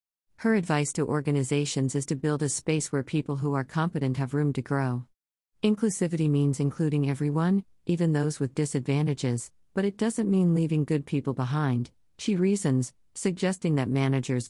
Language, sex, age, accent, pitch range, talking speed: English, female, 40-59, American, 130-160 Hz, 160 wpm